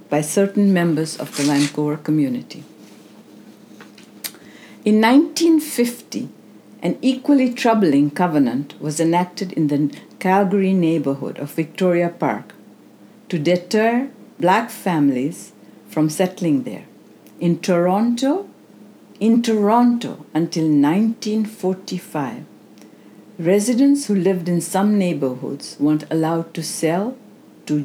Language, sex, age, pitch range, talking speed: English, female, 70-89, 150-215 Hz, 100 wpm